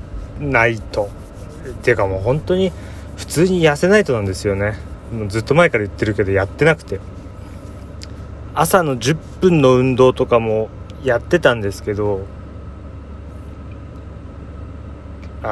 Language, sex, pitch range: Japanese, male, 80-110 Hz